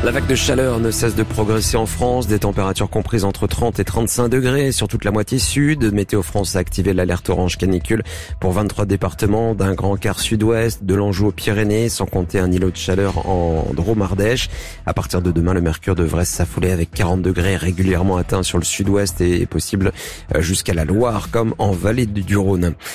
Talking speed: 195 wpm